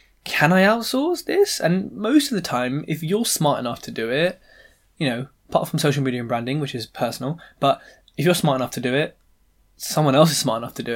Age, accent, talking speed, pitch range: 10-29, British, 230 wpm, 125-170 Hz